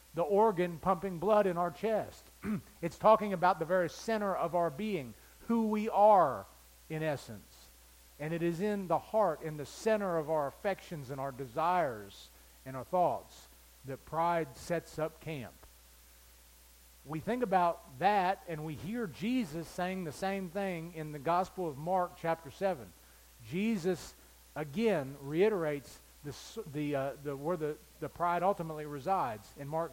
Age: 40-59